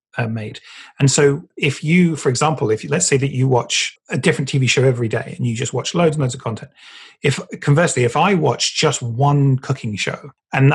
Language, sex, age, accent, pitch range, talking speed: English, male, 30-49, British, 120-150 Hz, 225 wpm